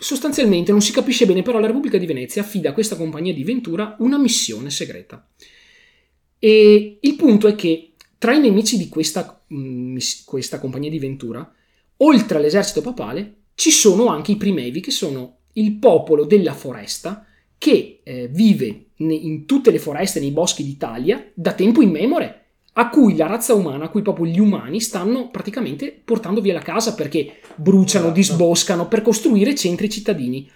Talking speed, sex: 165 wpm, male